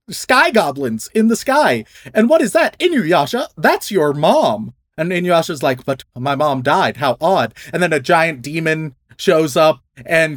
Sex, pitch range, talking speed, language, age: male, 145-190 Hz, 185 wpm, English, 30-49